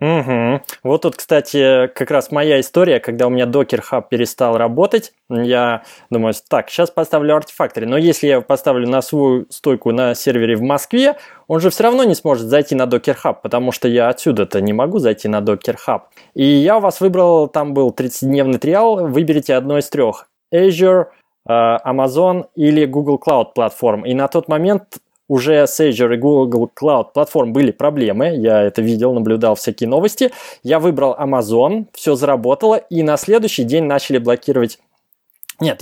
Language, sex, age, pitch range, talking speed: Russian, male, 20-39, 125-165 Hz, 170 wpm